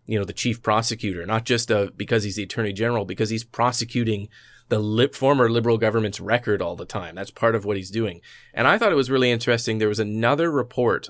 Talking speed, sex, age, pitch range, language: 215 wpm, male, 30-49, 105-120 Hz, English